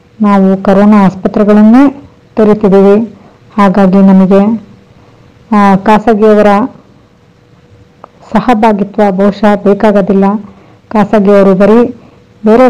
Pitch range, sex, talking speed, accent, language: 195-225 Hz, female, 60 wpm, native, Kannada